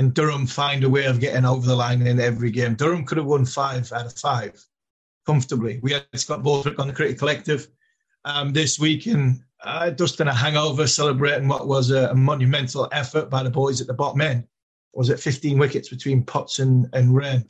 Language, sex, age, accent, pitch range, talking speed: English, male, 30-49, British, 125-145 Hz, 210 wpm